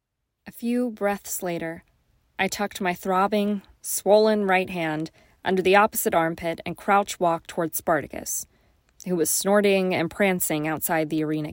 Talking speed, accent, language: 140 wpm, American, English